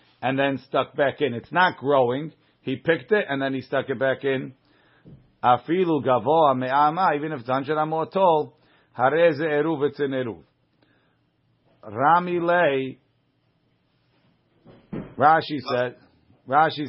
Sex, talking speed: male, 130 wpm